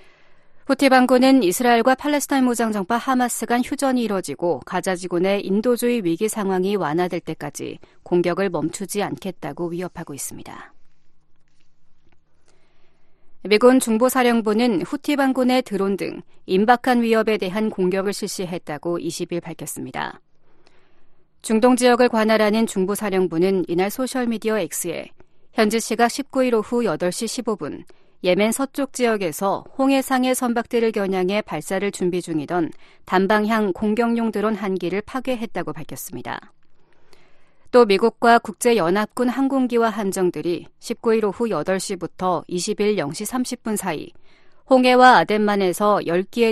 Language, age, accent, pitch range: Korean, 40-59, native, 185-245 Hz